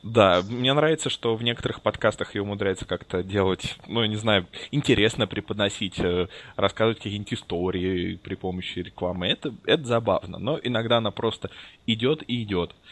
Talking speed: 155 wpm